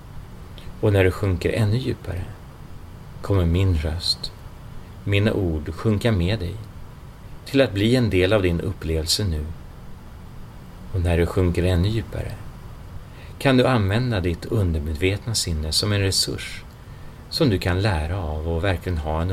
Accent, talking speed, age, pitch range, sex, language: native, 145 wpm, 40-59, 85-110 Hz, male, Swedish